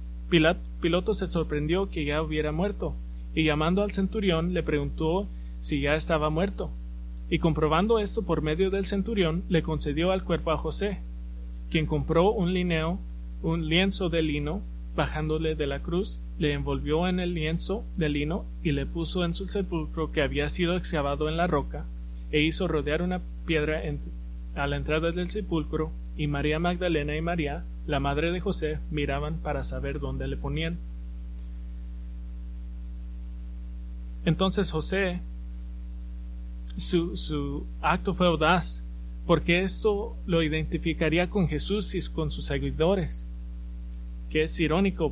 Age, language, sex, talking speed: 20-39, English, male, 140 wpm